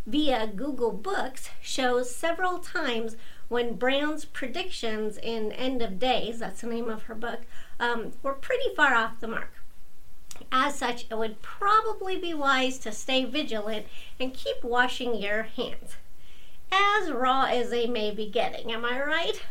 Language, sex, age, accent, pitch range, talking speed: English, female, 50-69, American, 230-320 Hz, 155 wpm